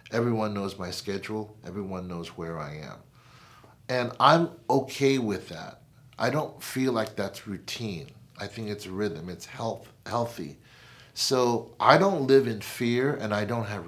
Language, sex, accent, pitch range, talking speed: English, male, American, 105-125 Hz, 155 wpm